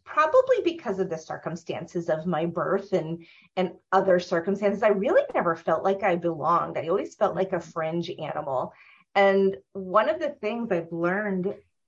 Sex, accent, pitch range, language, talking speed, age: female, American, 170-200 Hz, English, 165 wpm, 30-49